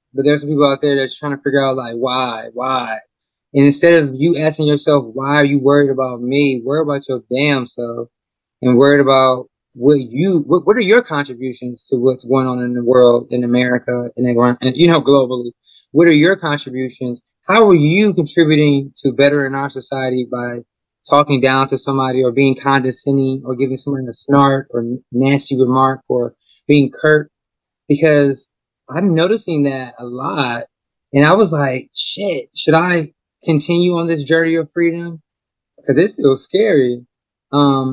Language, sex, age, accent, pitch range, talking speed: English, male, 20-39, American, 130-155 Hz, 175 wpm